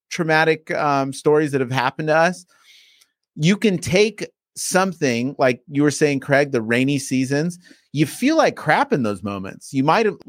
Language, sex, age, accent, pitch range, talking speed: English, male, 30-49, American, 135-180 Hz, 170 wpm